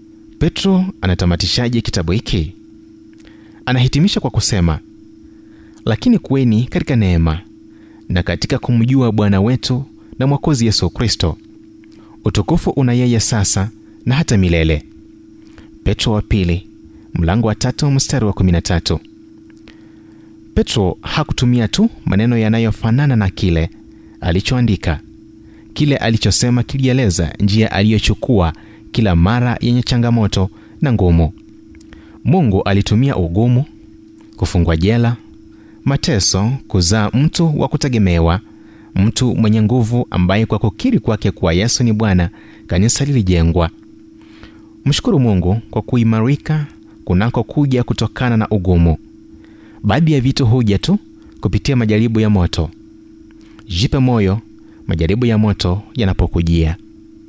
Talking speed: 110 wpm